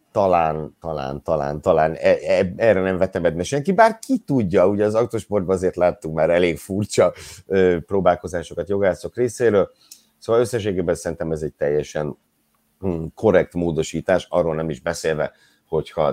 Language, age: Hungarian, 50-69